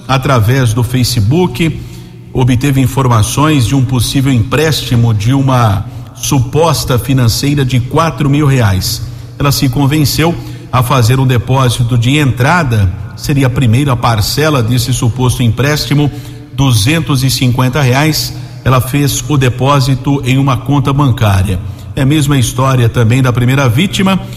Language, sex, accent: Portuguese, male, Brazilian